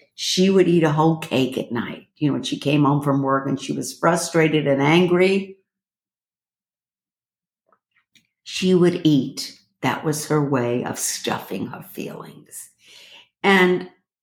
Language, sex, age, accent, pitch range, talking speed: English, female, 60-79, American, 145-200 Hz, 145 wpm